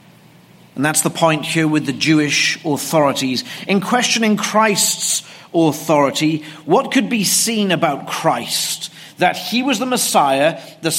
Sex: male